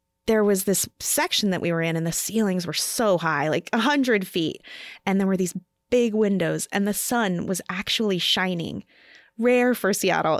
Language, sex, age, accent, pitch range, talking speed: English, female, 20-39, American, 175-215 Hz, 185 wpm